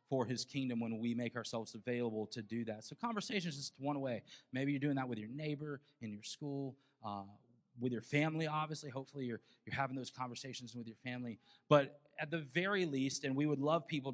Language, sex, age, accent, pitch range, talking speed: English, male, 20-39, American, 115-140 Hz, 210 wpm